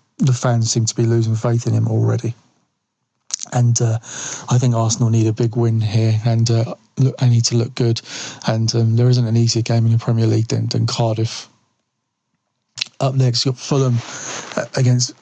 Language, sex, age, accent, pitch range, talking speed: English, male, 30-49, British, 115-125 Hz, 185 wpm